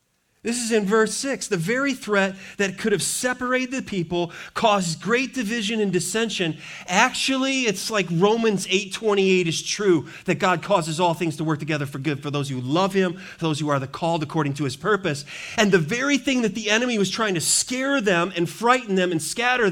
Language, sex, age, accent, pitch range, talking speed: English, male, 30-49, American, 170-235 Hz, 205 wpm